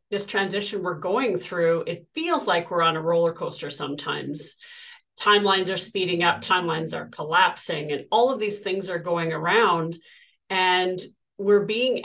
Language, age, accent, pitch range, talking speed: English, 40-59, American, 175-245 Hz, 160 wpm